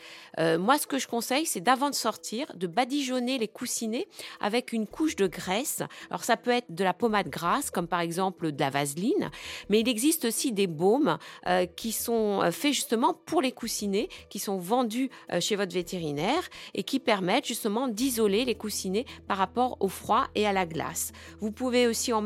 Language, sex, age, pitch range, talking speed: French, female, 40-59, 190-250 Hz, 200 wpm